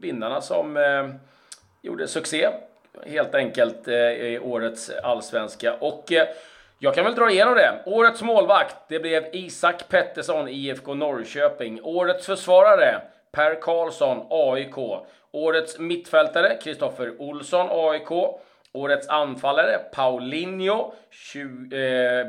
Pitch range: 130-165 Hz